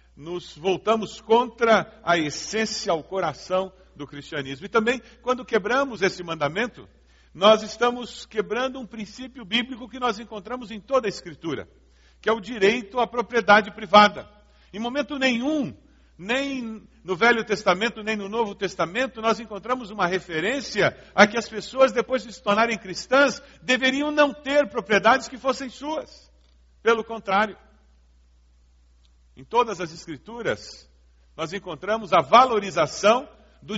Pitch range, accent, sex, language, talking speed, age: 185-245 Hz, Brazilian, male, Portuguese, 135 wpm, 60-79